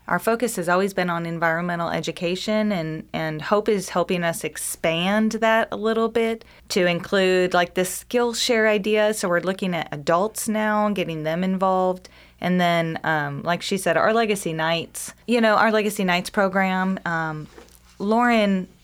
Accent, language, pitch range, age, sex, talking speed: American, English, 160-195 Hz, 20-39, female, 165 wpm